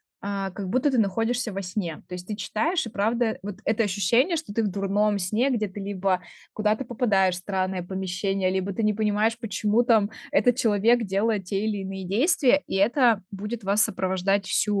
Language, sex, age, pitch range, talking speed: Russian, female, 20-39, 195-235 Hz, 185 wpm